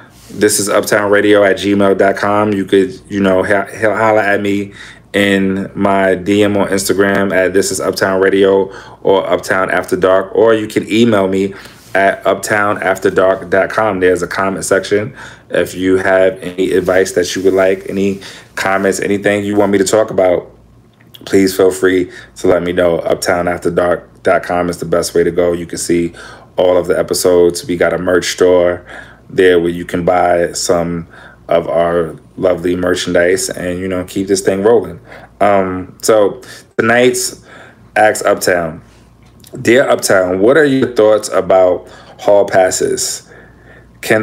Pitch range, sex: 90-100 Hz, male